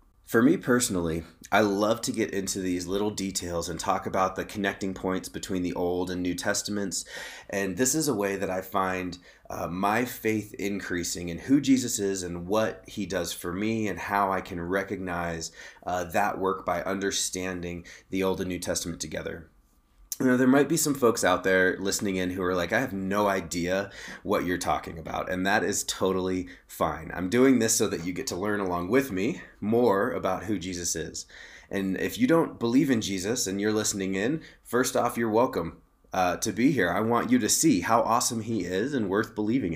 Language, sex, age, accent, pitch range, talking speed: English, male, 30-49, American, 90-110 Hz, 205 wpm